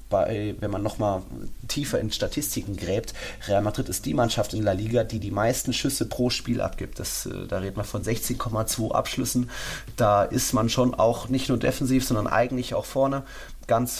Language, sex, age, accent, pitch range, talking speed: German, male, 30-49, German, 95-115 Hz, 185 wpm